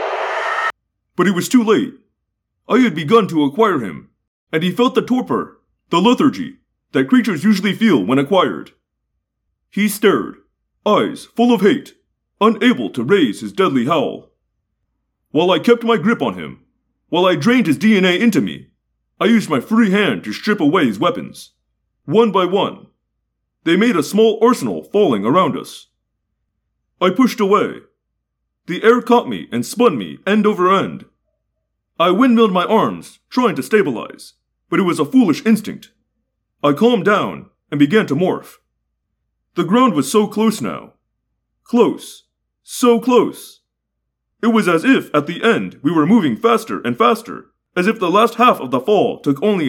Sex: male